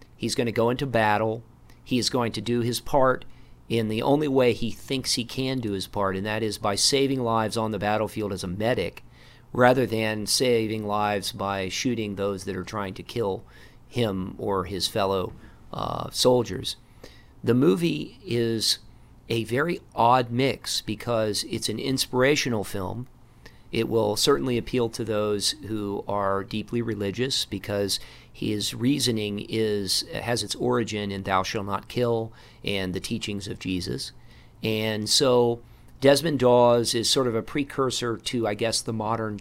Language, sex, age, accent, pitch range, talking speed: English, male, 40-59, American, 105-125 Hz, 165 wpm